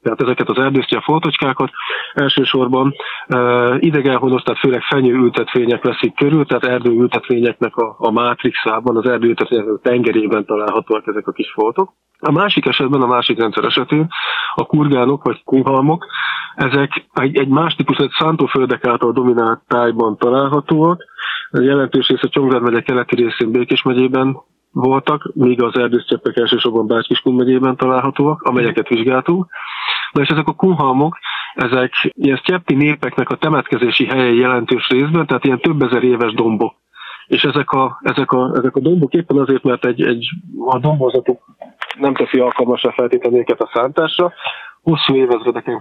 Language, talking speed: Hungarian, 145 wpm